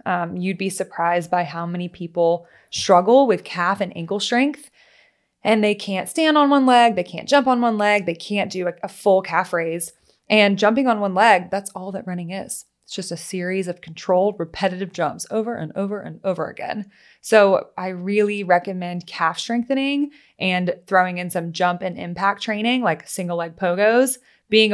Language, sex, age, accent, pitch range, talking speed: English, female, 20-39, American, 180-225 Hz, 190 wpm